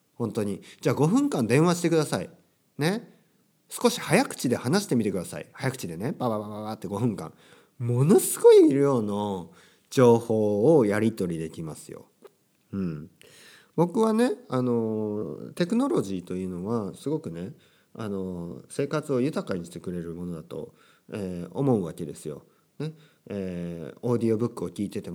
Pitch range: 90-150 Hz